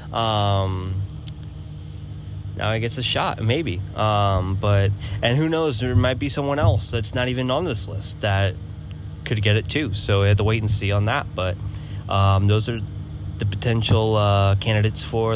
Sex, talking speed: male, 180 wpm